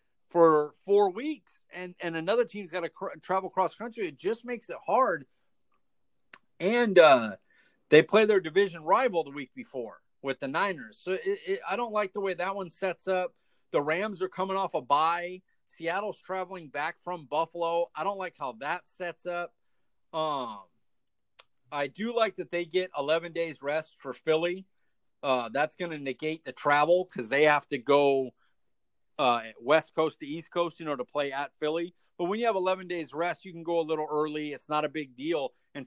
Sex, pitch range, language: male, 145-190 Hz, English